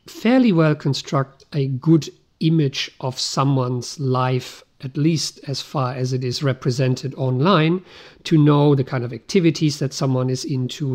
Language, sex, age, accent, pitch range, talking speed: English, male, 50-69, German, 130-160 Hz, 155 wpm